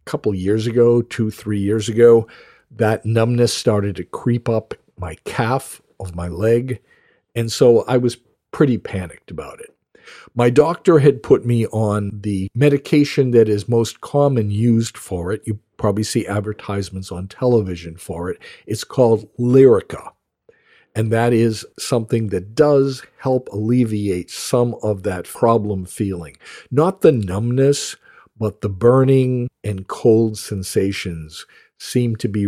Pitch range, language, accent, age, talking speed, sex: 100-125 Hz, English, American, 50-69, 140 wpm, male